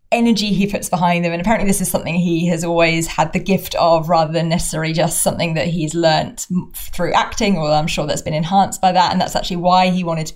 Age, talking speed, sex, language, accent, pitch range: 20-39, 245 wpm, female, English, British, 170-195 Hz